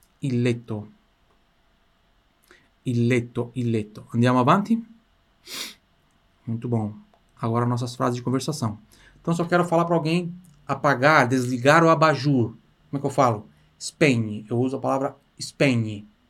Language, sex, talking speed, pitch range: Italian, male, 125 wpm, 120-145 Hz